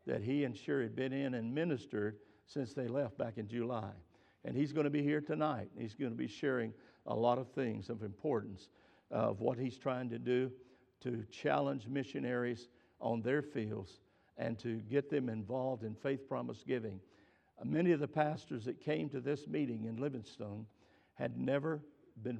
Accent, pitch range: American, 115-145 Hz